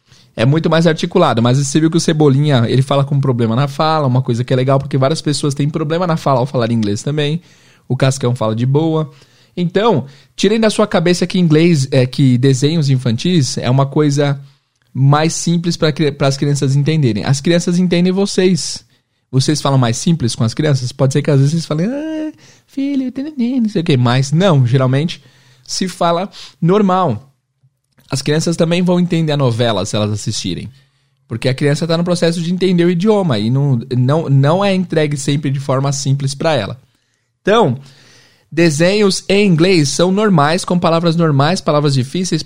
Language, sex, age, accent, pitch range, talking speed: Portuguese, male, 20-39, Brazilian, 130-170 Hz, 185 wpm